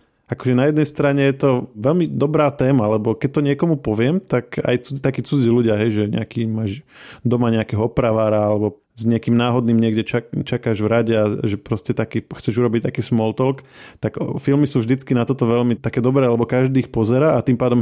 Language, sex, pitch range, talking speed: Slovak, male, 115-145 Hz, 195 wpm